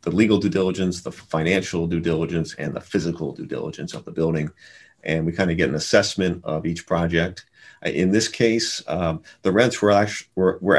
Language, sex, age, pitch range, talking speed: English, male, 40-59, 85-100 Hz, 190 wpm